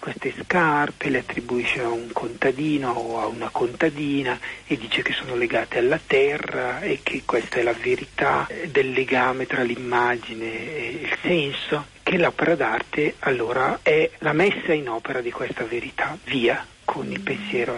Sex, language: male, Italian